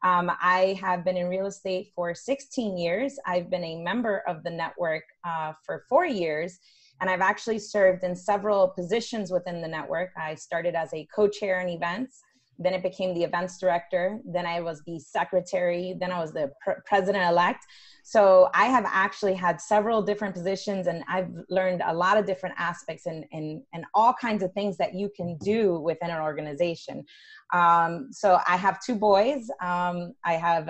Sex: female